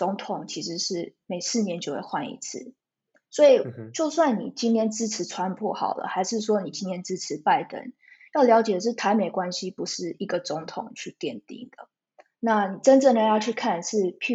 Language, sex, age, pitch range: Chinese, female, 20-39, 190-245 Hz